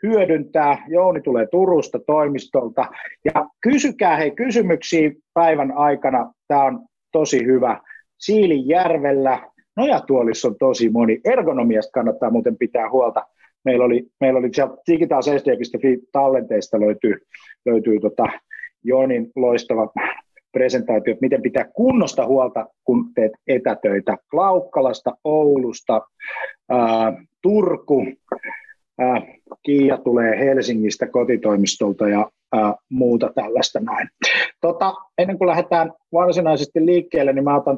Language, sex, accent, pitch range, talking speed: Finnish, male, native, 125-170 Hz, 105 wpm